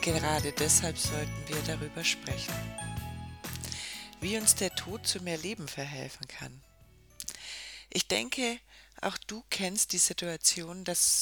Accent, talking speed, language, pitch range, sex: German, 125 wpm, German, 160-200 Hz, female